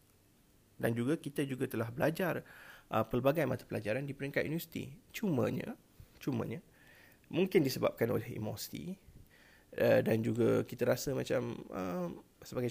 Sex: male